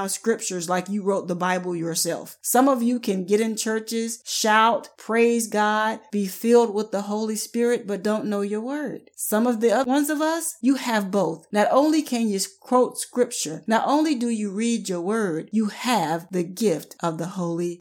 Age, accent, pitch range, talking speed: 40-59, American, 180-240 Hz, 195 wpm